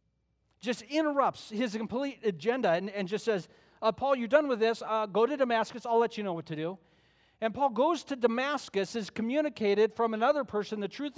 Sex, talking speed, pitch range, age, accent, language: male, 205 wpm, 170-230 Hz, 40-59, American, English